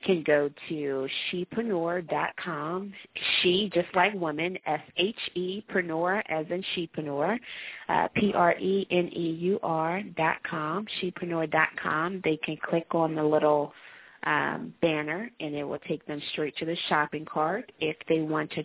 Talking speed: 120 wpm